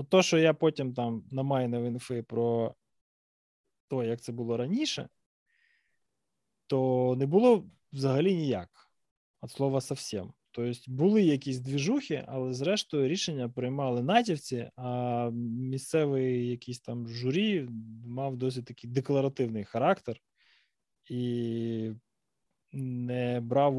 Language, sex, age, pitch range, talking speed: Ukrainian, male, 20-39, 120-145 Hz, 110 wpm